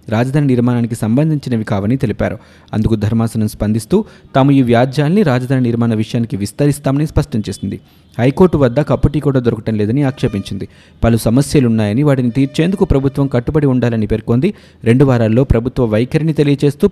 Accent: native